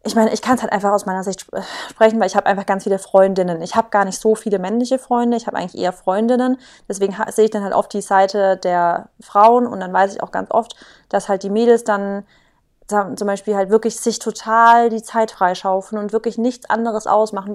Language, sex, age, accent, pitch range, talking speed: German, female, 20-39, German, 210-245 Hz, 235 wpm